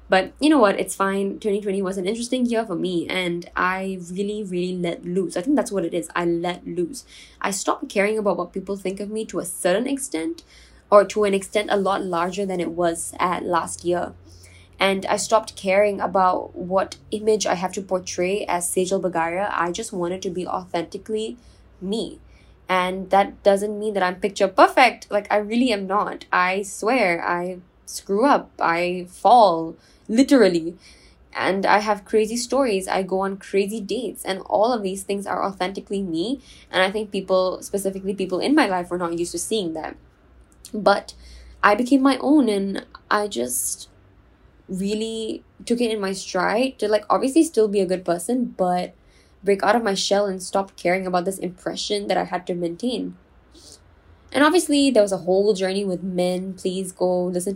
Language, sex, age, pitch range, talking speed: English, female, 10-29, 180-210 Hz, 190 wpm